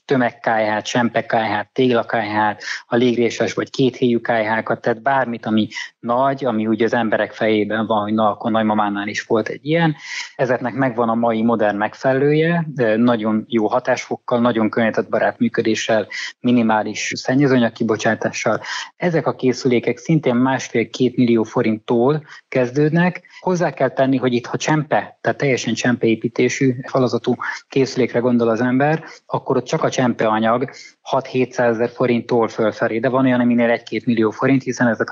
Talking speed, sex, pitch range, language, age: 135 wpm, male, 115-130 Hz, Hungarian, 20-39